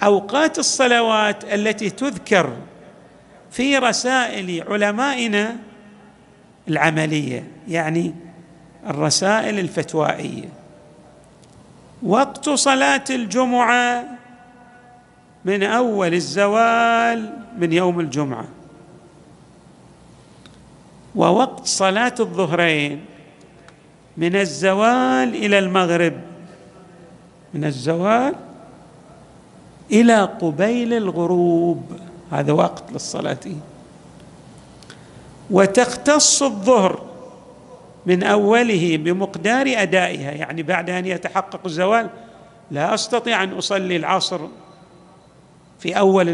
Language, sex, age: Arabic, male, 50-69